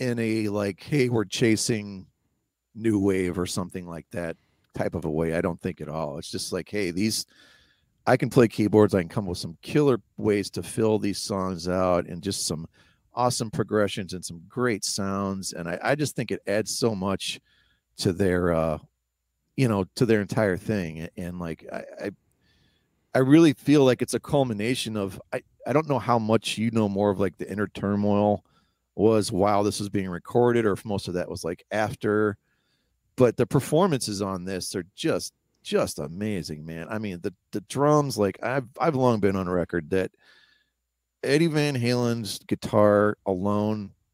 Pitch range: 95-115 Hz